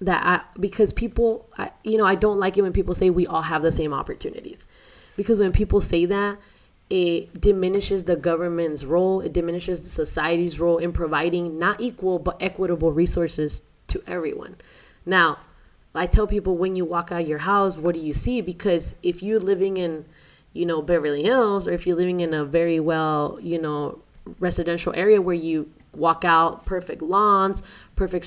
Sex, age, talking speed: female, 20-39, 180 wpm